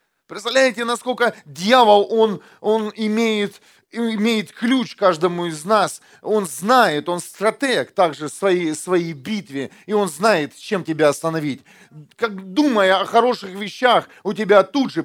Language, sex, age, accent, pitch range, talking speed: Russian, male, 40-59, native, 155-220 Hz, 140 wpm